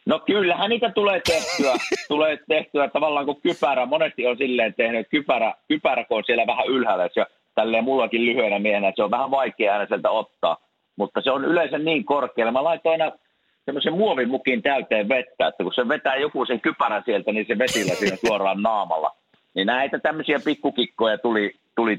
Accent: native